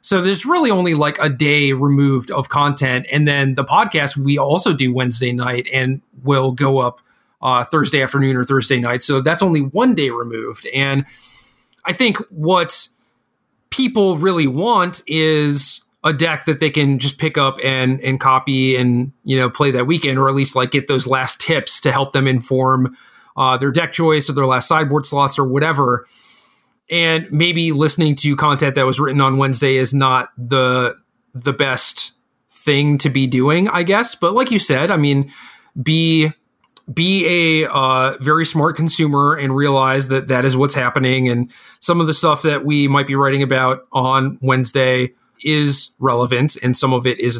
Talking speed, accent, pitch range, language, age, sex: 180 wpm, American, 130-155 Hz, English, 30-49, male